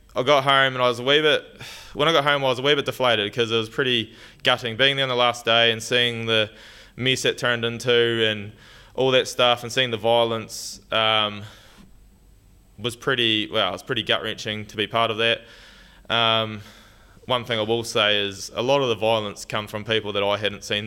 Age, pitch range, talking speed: 20-39, 110-125 Hz, 225 wpm